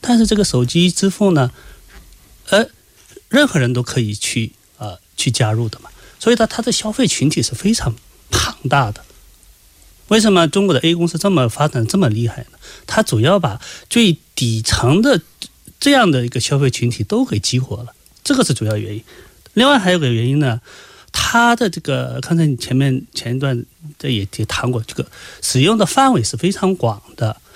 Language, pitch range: Korean, 125-200 Hz